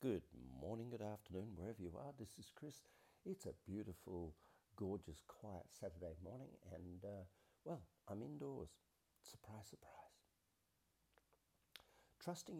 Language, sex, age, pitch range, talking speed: English, male, 60-79, 85-110 Hz, 120 wpm